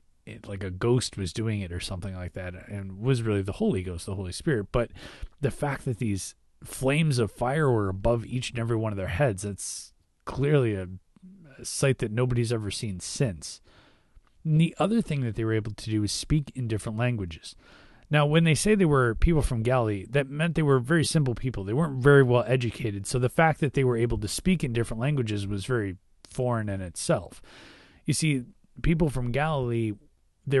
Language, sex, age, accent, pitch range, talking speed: English, male, 30-49, American, 100-140 Hz, 205 wpm